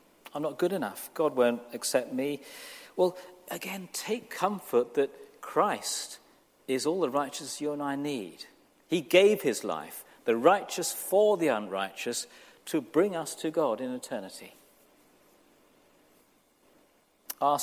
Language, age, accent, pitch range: English, 50-69, British, 120-200 Hz